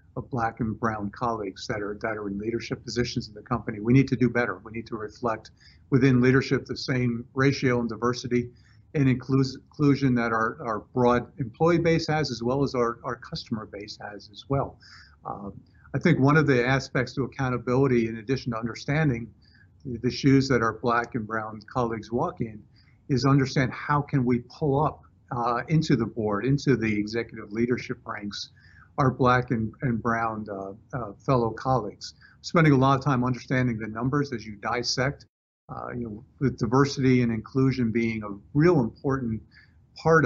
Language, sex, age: English, male, 50-69